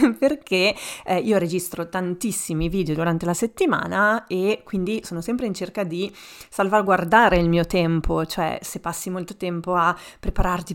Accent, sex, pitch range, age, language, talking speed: native, female, 170-200 Hz, 30-49, Italian, 150 wpm